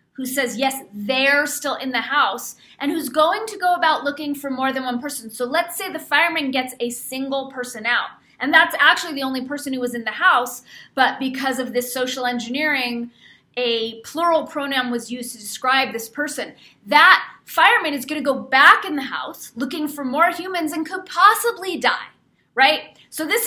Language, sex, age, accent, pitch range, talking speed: English, female, 30-49, American, 240-315 Hz, 195 wpm